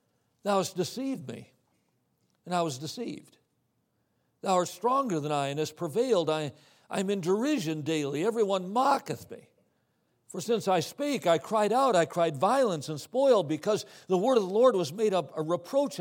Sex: male